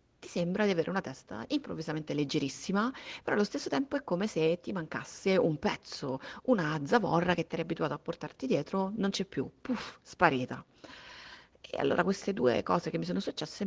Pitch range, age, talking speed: 150-210 Hz, 30-49, 185 wpm